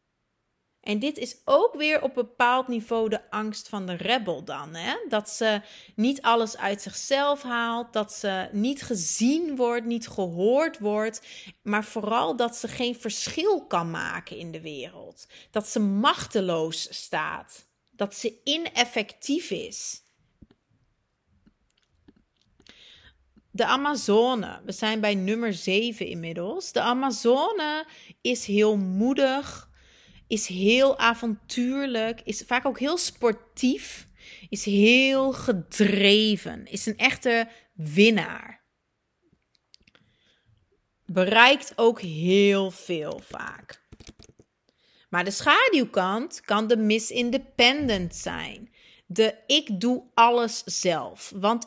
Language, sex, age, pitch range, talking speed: Dutch, female, 40-59, 205-245 Hz, 110 wpm